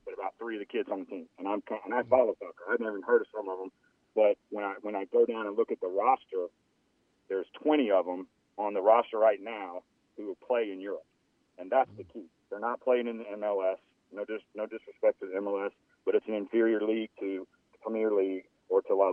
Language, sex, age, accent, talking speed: English, male, 40-59, American, 240 wpm